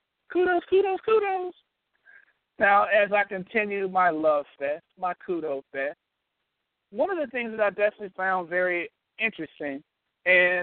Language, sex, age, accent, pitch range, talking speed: English, male, 50-69, American, 175-230 Hz, 135 wpm